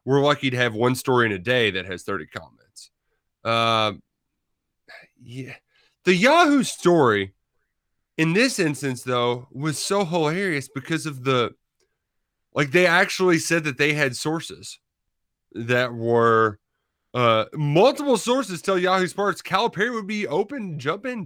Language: English